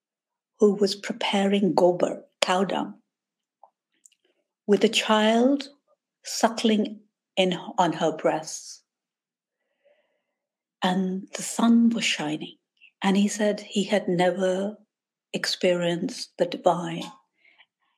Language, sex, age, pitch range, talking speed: English, female, 60-79, 170-230 Hz, 95 wpm